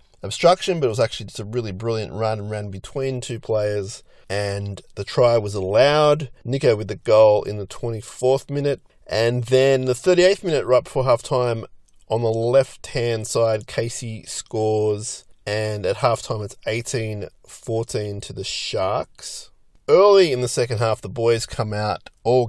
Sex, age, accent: male, 30-49, Australian